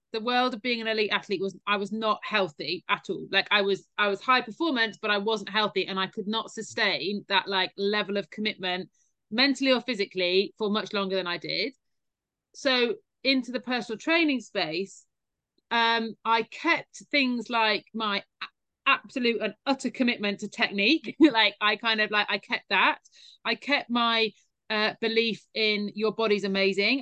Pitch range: 200-240 Hz